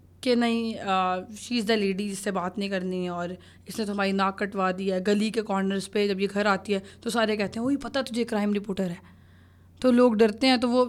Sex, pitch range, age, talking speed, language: female, 210-275 Hz, 20-39, 240 wpm, Urdu